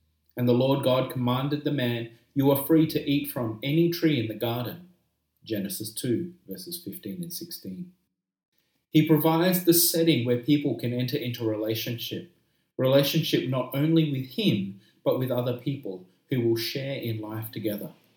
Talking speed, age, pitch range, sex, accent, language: 160 wpm, 30-49, 120-165 Hz, male, Australian, English